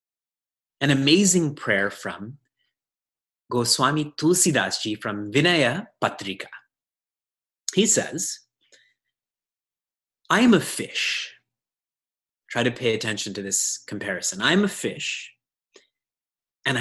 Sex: male